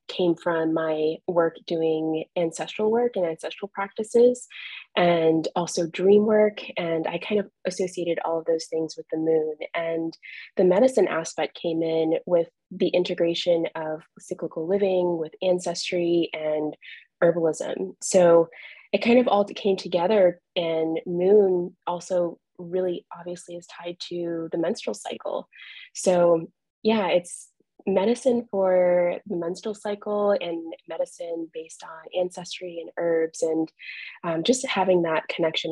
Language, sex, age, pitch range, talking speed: English, female, 20-39, 165-190 Hz, 135 wpm